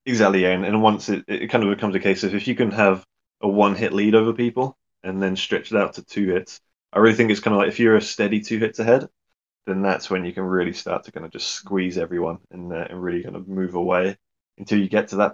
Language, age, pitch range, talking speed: English, 20-39, 95-105 Hz, 280 wpm